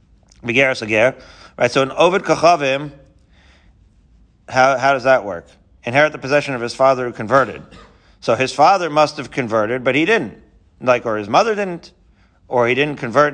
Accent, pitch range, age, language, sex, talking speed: American, 110-145 Hz, 40-59, English, male, 165 wpm